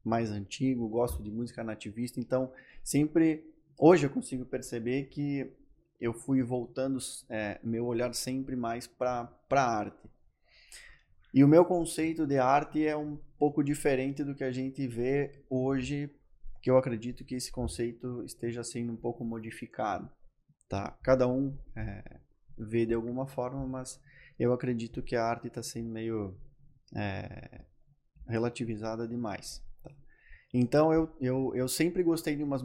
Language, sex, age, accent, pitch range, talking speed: Portuguese, male, 20-39, Brazilian, 115-135 Hz, 145 wpm